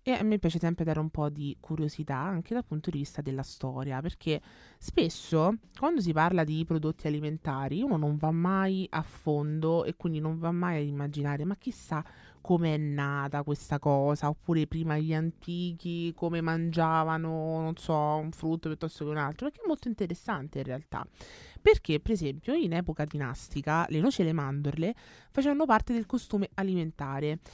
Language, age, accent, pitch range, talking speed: Italian, 20-39, native, 145-180 Hz, 175 wpm